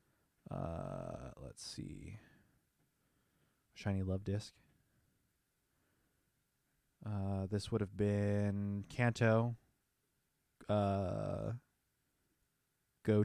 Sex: male